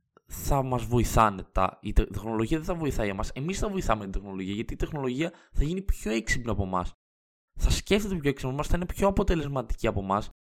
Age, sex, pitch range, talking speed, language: 20-39, male, 105-140 Hz, 205 wpm, Greek